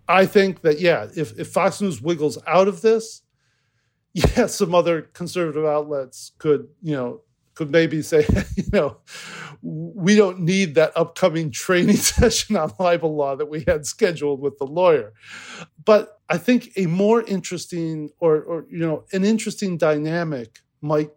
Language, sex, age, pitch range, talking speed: English, male, 40-59, 130-175 Hz, 160 wpm